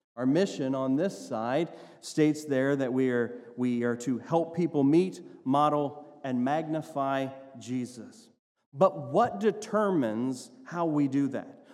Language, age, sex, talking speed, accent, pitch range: English, 40-59, male, 140 wpm, American, 130-180 Hz